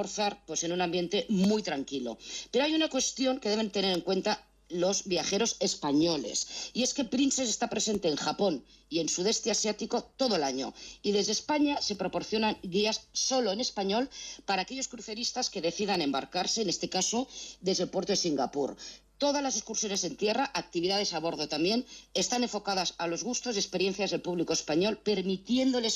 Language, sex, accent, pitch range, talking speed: Spanish, female, Spanish, 170-220 Hz, 175 wpm